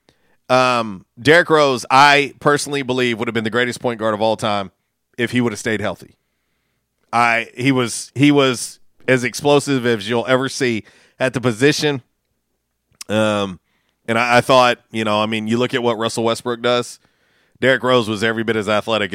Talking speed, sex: 185 wpm, male